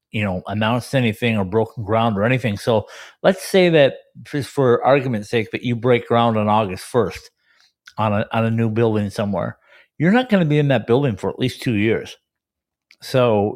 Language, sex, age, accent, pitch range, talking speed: English, male, 50-69, American, 105-130 Hz, 200 wpm